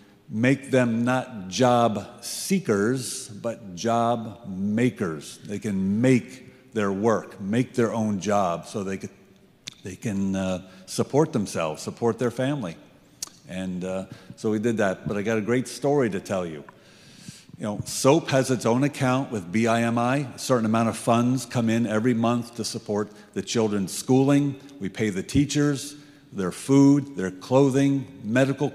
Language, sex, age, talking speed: English, male, 50-69, 155 wpm